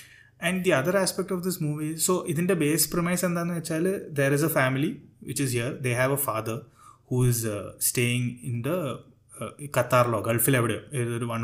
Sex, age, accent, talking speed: male, 20-39, native, 200 wpm